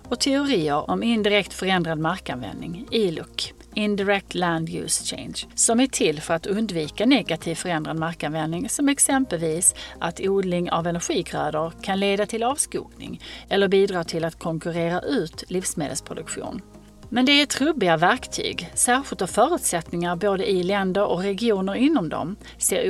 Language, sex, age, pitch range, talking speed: Swedish, female, 40-59, 170-245 Hz, 140 wpm